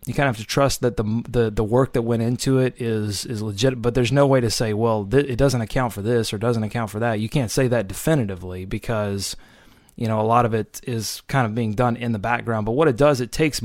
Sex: male